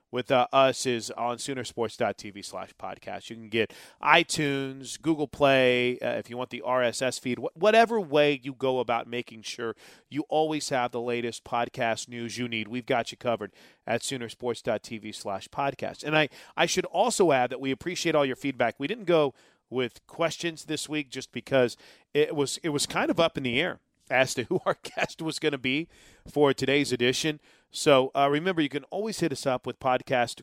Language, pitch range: English, 115-140 Hz